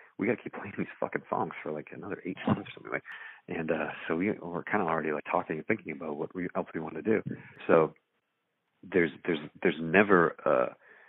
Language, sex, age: English, male, 40-59